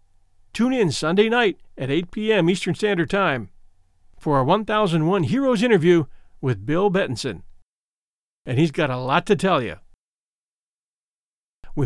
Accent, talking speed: American, 135 wpm